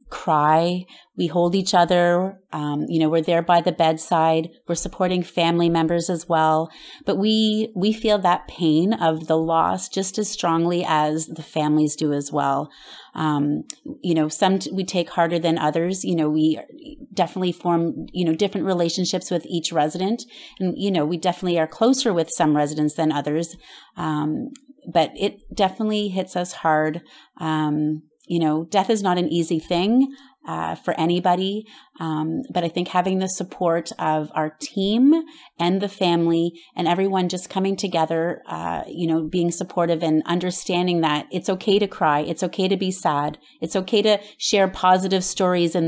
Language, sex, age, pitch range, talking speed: English, female, 30-49, 160-190 Hz, 175 wpm